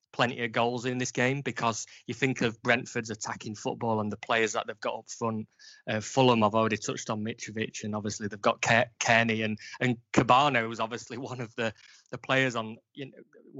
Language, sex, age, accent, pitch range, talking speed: English, male, 20-39, British, 110-125 Hz, 205 wpm